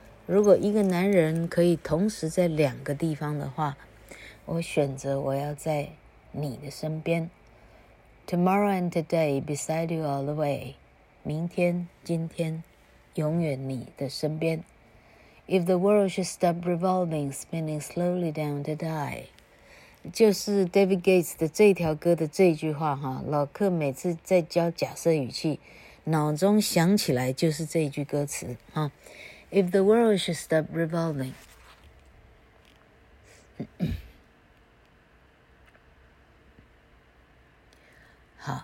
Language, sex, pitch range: Chinese, female, 145-175 Hz